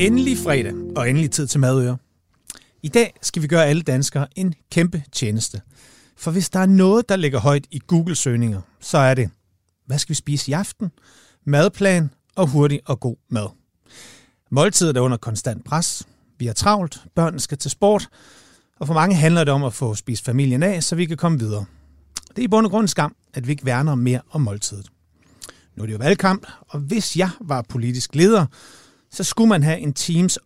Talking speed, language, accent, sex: 200 wpm, Danish, native, male